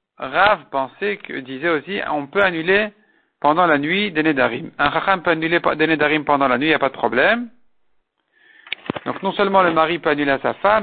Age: 50-69